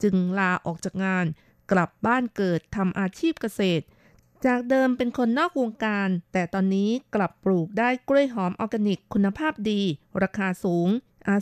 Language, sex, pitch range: Thai, female, 190-240 Hz